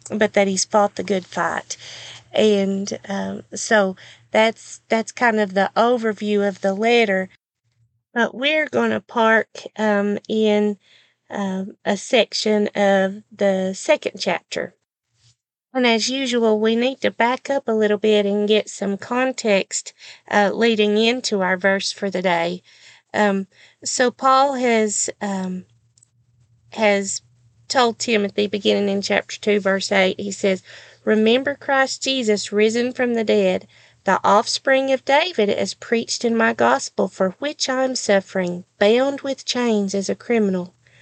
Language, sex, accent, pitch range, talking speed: English, female, American, 190-225 Hz, 145 wpm